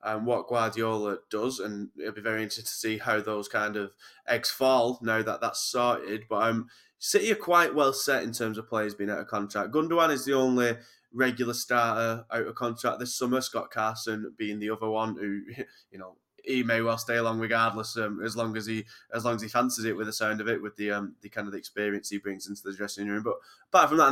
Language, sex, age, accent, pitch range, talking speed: English, male, 10-29, British, 110-120 Hz, 240 wpm